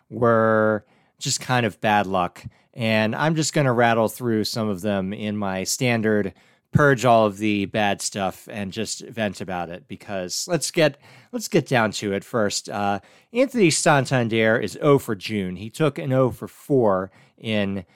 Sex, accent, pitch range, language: male, American, 105-140 Hz, English